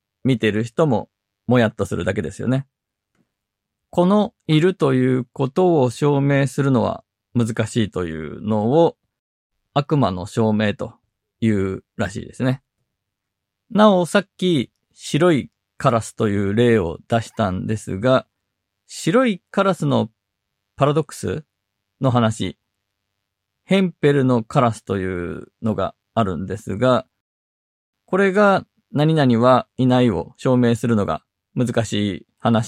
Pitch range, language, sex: 100-140 Hz, Japanese, male